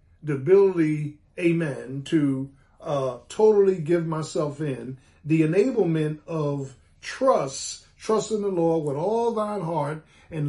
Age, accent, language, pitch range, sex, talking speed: 50-69, American, English, 140-185 Hz, male, 125 wpm